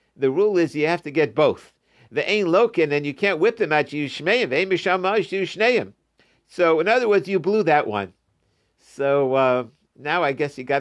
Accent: American